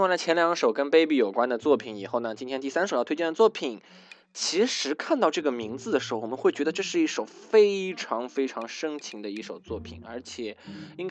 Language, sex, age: Chinese, male, 20-39